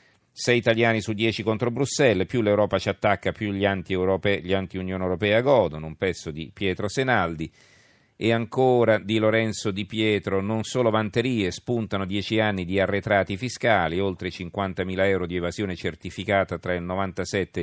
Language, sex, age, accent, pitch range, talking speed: Italian, male, 40-59, native, 90-110 Hz, 155 wpm